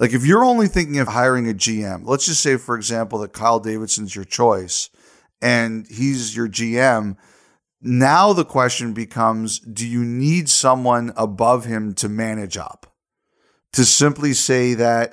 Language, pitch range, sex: English, 110-130 Hz, male